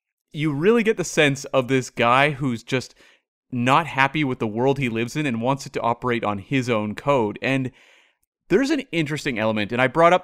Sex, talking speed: male, 210 wpm